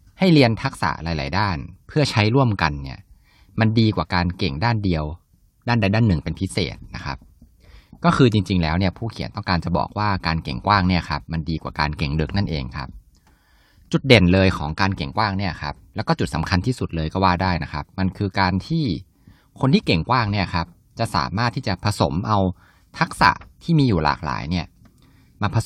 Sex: male